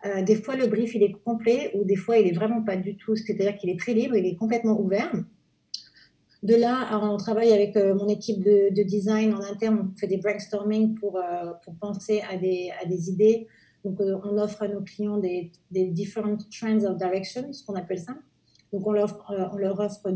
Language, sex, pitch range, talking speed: Italian, female, 200-220 Hz, 240 wpm